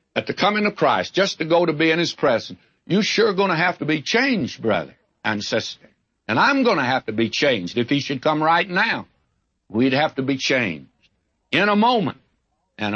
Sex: male